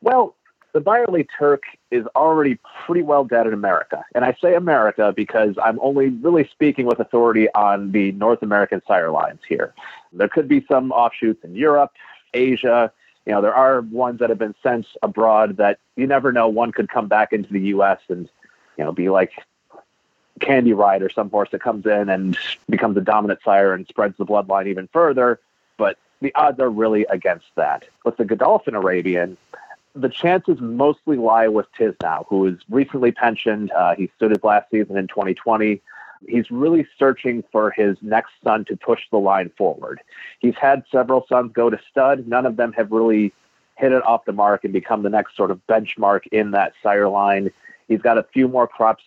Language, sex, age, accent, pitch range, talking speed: English, male, 30-49, American, 105-130 Hz, 190 wpm